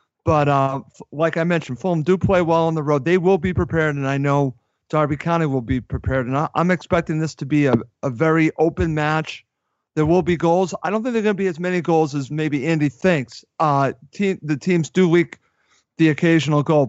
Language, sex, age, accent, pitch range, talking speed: English, male, 40-59, American, 145-185 Hz, 225 wpm